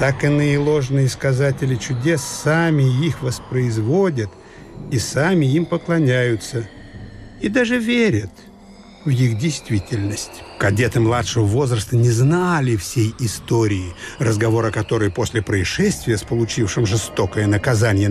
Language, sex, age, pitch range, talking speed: Russian, male, 60-79, 110-140 Hz, 115 wpm